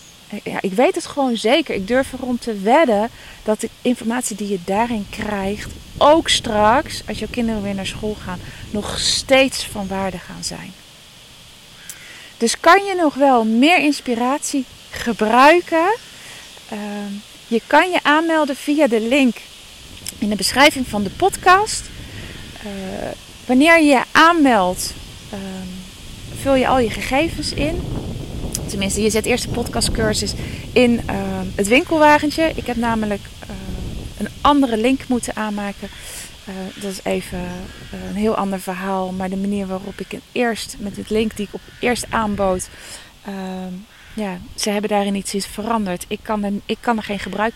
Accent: Dutch